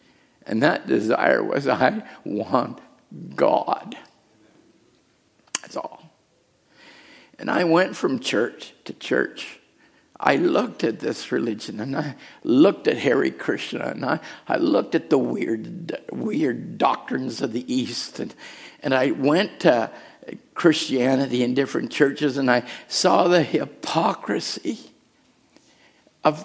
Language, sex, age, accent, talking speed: English, male, 60-79, American, 120 wpm